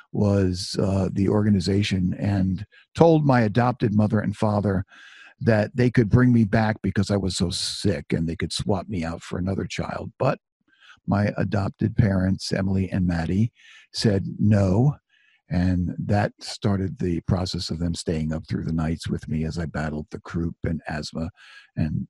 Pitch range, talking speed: 90-115 Hz, 170 wpm